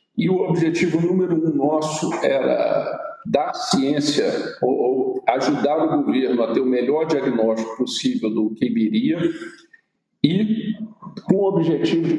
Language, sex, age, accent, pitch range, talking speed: Portuguese, male, 50-69, Brazilian, 110-170 Hz, 135 wpm